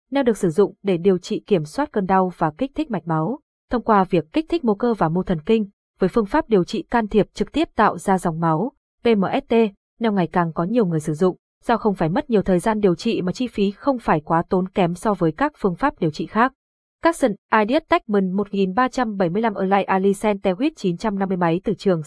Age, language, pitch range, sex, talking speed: 20-39, Vietnamese, 180-230 Hz, female, 225 wpm